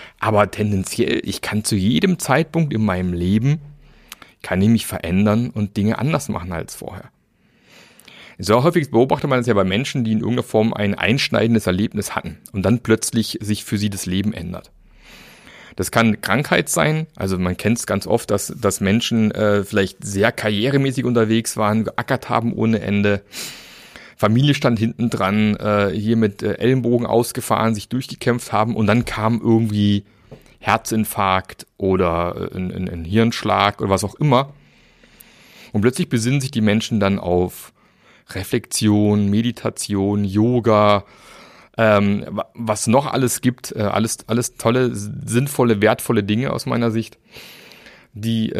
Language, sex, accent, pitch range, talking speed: German, male, German, 105-120 Hz, 145 wpm